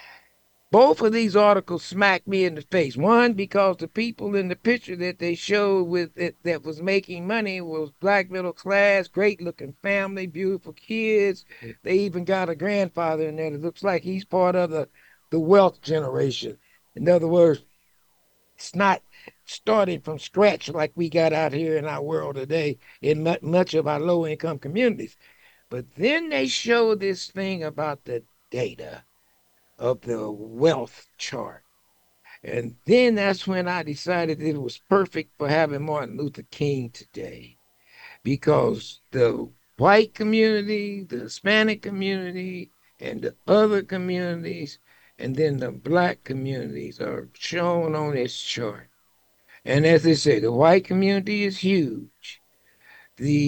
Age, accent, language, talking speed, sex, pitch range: 60-79, American, English, 150 wpm, male, 150-195 Hz